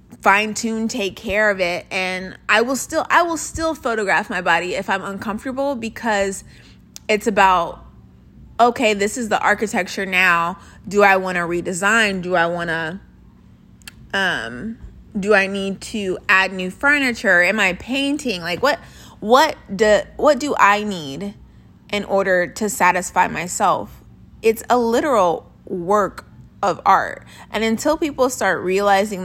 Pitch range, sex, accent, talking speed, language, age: 180-220 Hz, female, American, 145 wpm, English, 20-39